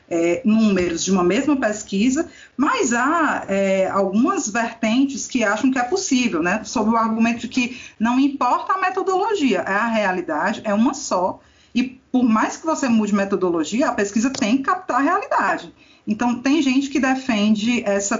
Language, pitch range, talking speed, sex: Portuguese, 195-265 Hz, 170 wpm, female